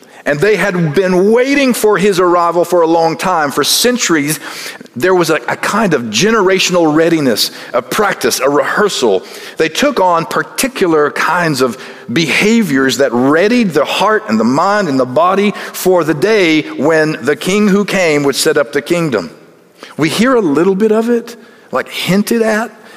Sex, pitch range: male, 140-205 Hz